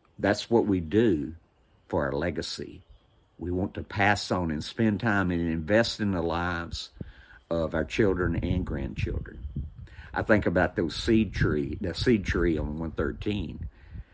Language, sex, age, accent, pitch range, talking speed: English, male, 50-69, American, 80-105 Hz, 155 wpm